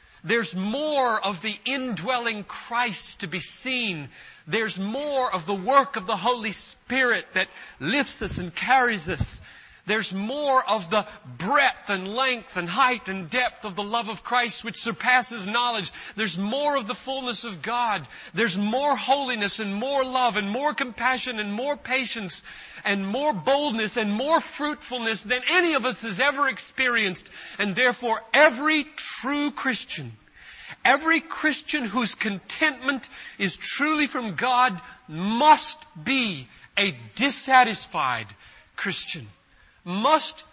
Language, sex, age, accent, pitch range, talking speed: English, male, 40-59, American, 185-265 Hz, 140 wpm